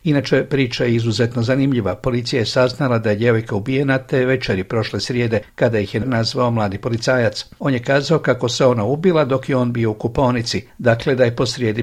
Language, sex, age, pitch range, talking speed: Croatian, male, 60-79, 115-140 Hz, 205 wpm